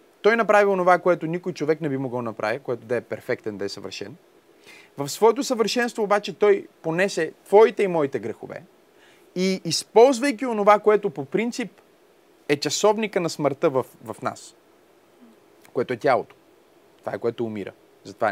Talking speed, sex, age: 155 wpm, male, 30-49